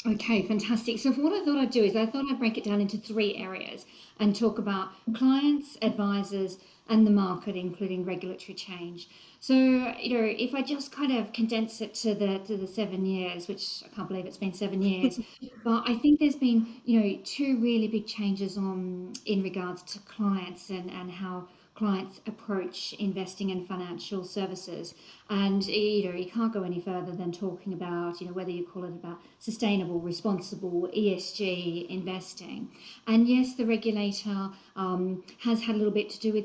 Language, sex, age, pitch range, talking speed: English, female, 40-59, 185-225 Hz, 185 wpm